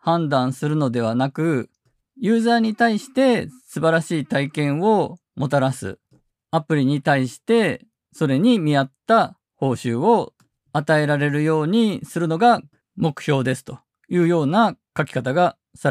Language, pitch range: Japanese, 130-180 Hz